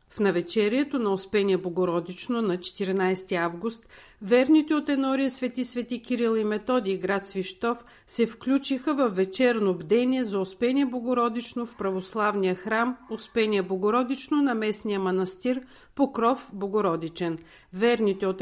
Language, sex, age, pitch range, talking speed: Bulgarian, female, 50-69, 200-245 Hz, 125 wpm